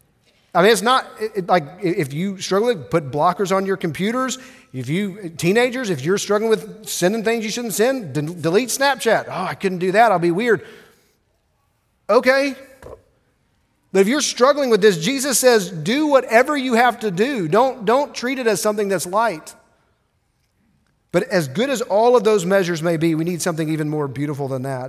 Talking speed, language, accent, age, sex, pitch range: 195 wpm, English, American, 40-59, male, 155-215 Hz